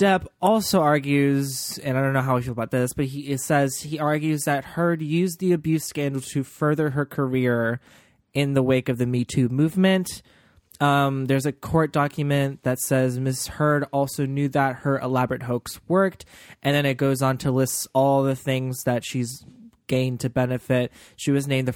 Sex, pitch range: male, 130-160 Hz